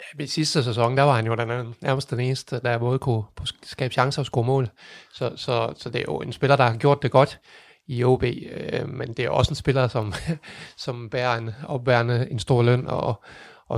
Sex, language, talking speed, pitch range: male, Danish, 220 wpm, 115-130 Hz